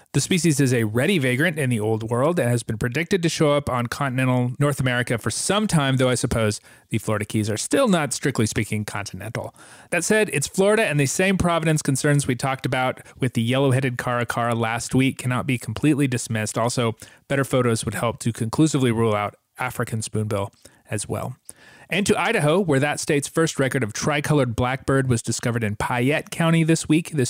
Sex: male